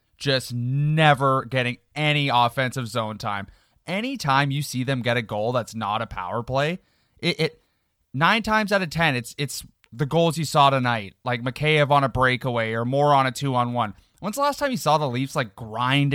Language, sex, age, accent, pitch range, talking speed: English, male, 20-39, American, 125-155 Hz, 195 wpm